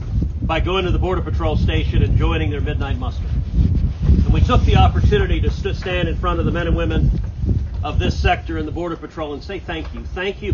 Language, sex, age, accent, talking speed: English, male, 40-59, American, 220 wpm